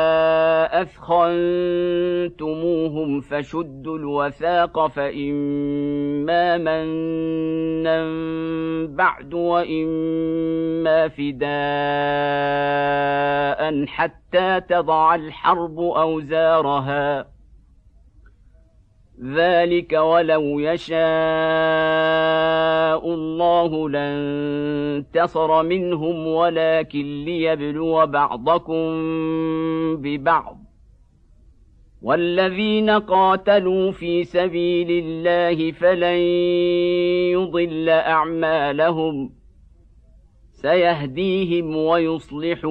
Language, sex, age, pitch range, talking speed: Arabic, male, 50-69, 150-175 Hz, 45 wpm